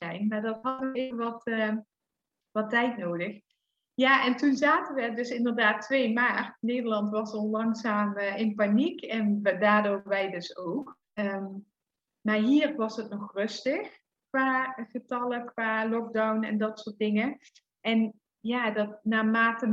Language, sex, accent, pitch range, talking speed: English, female, Dutch, 205-250 Hz, 150 wpm